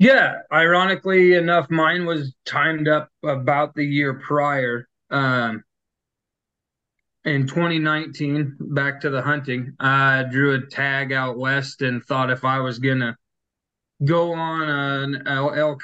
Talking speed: 135 wpm